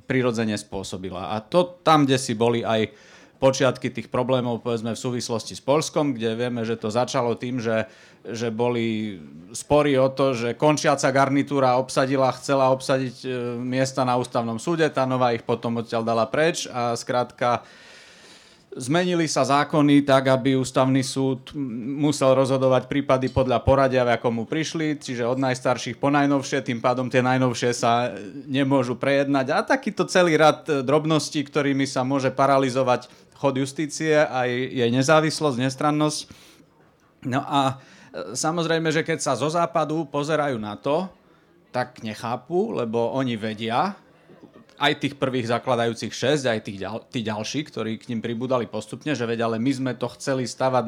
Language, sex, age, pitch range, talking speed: Slovak, male, 30-49, 120-145 Hz, 150 wpm